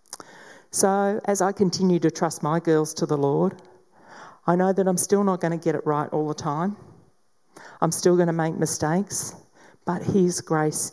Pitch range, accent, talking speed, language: 145-190 Hz, Australian, 185 wpm, English